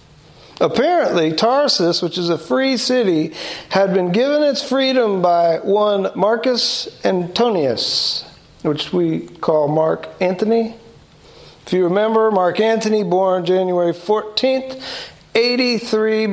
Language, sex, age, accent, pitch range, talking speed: English, male, 50-69, American, 160-210 Hz, 110 wpm